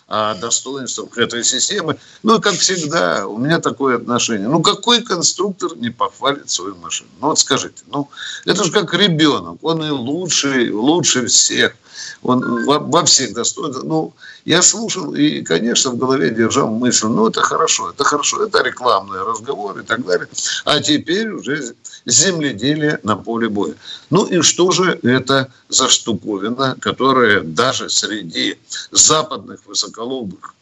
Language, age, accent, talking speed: Russian, 60-79, native, 145 wpm